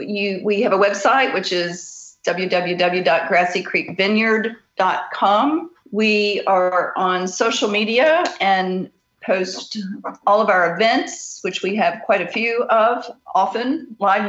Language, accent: English, American